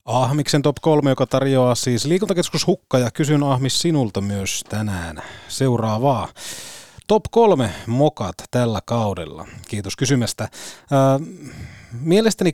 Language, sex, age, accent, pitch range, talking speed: Finnish, male, 30-49, native, 105-135 Hz, 115 wpm